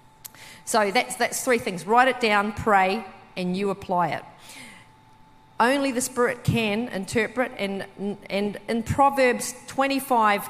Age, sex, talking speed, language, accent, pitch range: 40-59, female, 135 wpm, English, Australian, 195-250 Hz